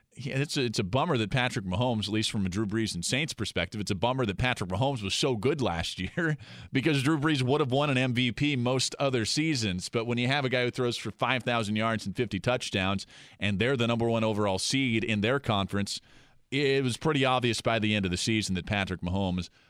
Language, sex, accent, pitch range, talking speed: English, male, American, 100-135 Hz, 235 wpm